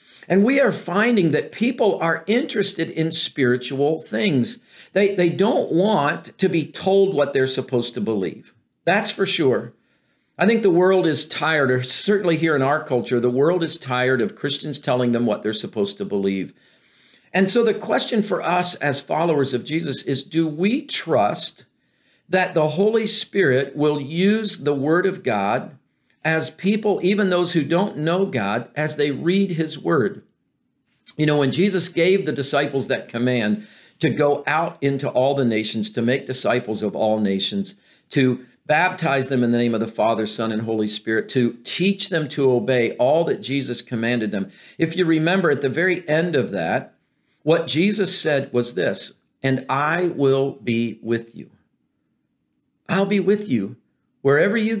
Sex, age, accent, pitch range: male, 50-69, American, 130-185 Hz